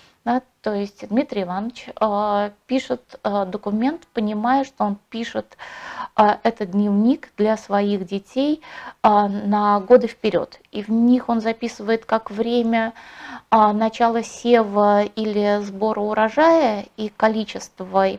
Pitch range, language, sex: 195-230 Hz, Russian, female